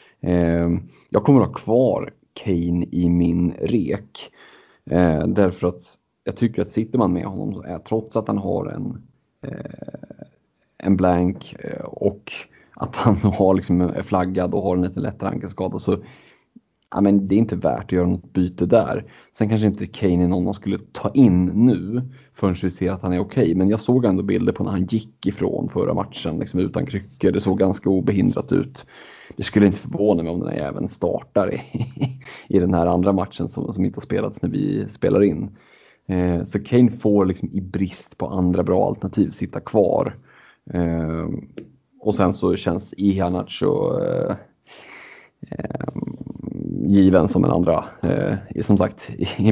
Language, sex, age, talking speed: Swedish, male, 30-49, 170 wpm